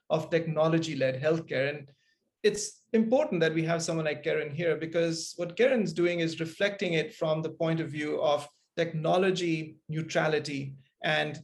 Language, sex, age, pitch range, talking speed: English, male, 30-49, 155-195 Hz, 150 wpm